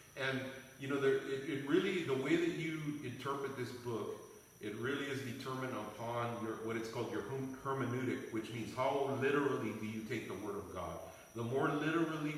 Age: 40-59